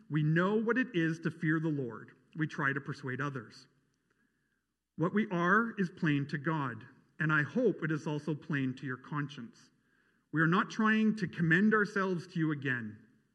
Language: English